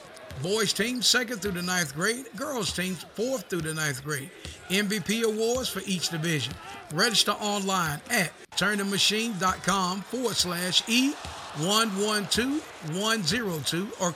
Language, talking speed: English, 115 wpm